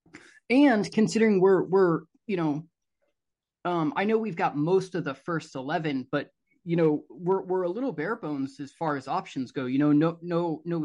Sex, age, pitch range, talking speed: male, 20-39, 145-175 Hz, 195 wpm